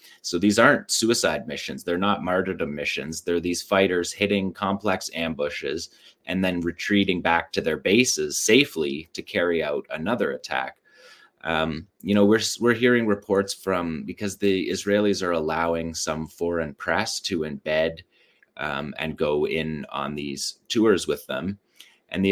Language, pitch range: English, 80-95 Hz